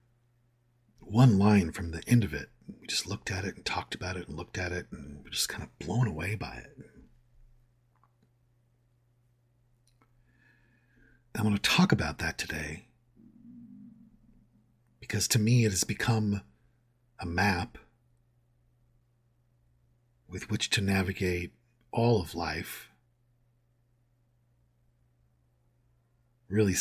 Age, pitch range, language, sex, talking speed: 50-69, 95-120 Hz, English, male, 115 wpm